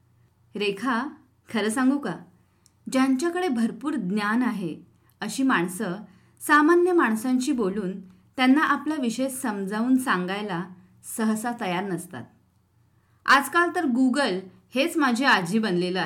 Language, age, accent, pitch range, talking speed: Marathi, 30-49, native, 175-260 Hz, 105 wpm